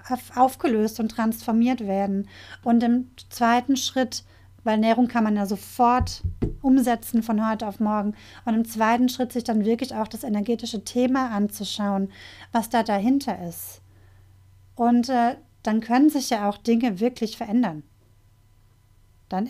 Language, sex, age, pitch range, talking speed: German, female, 30-49, 205-240 Hz, 140 wpm